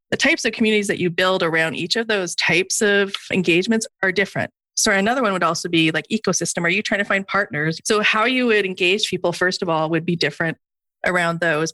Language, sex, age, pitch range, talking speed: English, female, 30-49, 165-200 Hz, 225 wpm